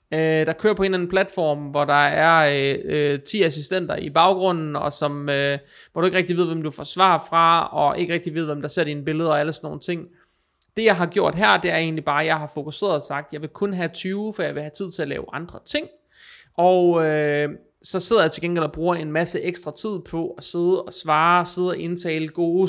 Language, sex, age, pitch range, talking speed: Danish, male, 20-39, 150-180 Hz, 255 wpm